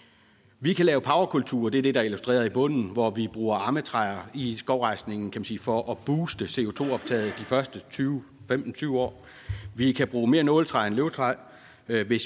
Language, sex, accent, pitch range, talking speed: Danish, male, native, 110-135 Hz, 180 wpm